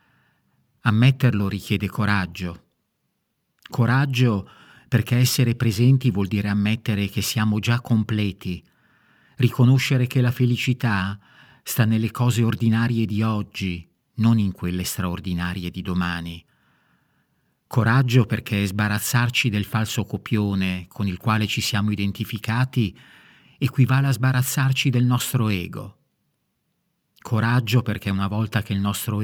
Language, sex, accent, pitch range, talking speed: Italian, male, native, 100-125 Hz, 115 wpm